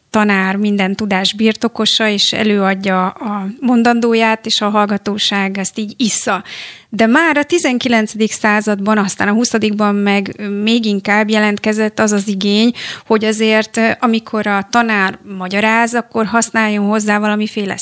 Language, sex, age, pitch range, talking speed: Hungarian, female, 30-49, 200-220 Hz, 130 wpm